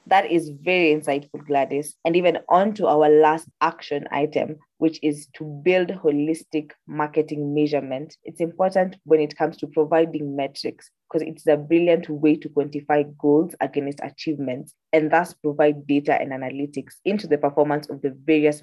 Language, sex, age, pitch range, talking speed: English, female, 20-39, 145-160 Hz, 160 wpm